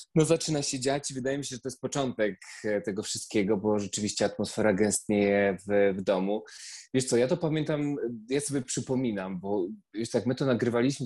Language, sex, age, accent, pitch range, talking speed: Polish, male, 20-39, native, 110-140 Hz, 190 wpm